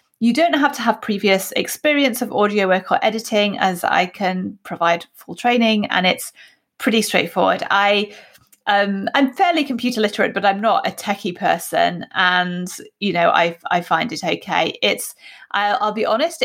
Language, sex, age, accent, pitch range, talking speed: English, female, 30-49, British, 190-235 Hz, 170 wpm